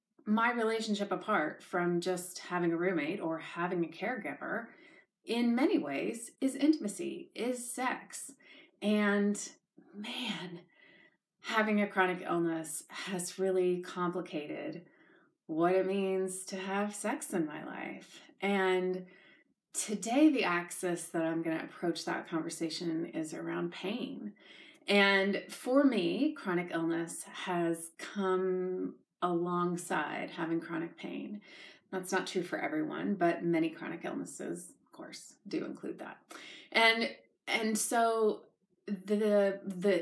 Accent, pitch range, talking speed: American, 170-210 Hz, 120 wpm